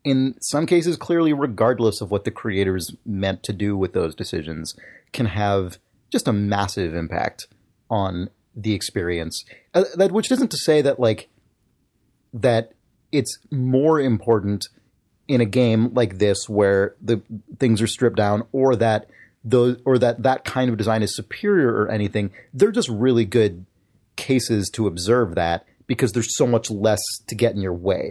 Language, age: English, 30-49